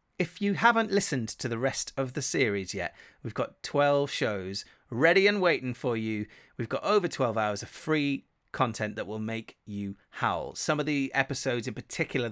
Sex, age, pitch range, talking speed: male, 30-49, 115-165 Hz, 190 wpm